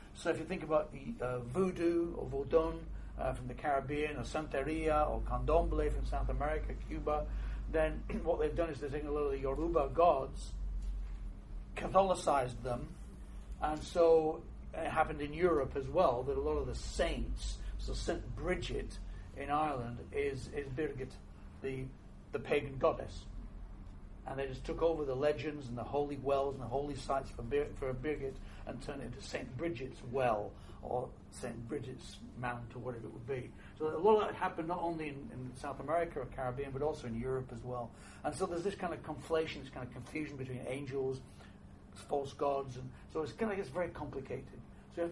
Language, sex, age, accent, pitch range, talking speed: English, male, 60-79, British, 125-160 Hz, 195 wpm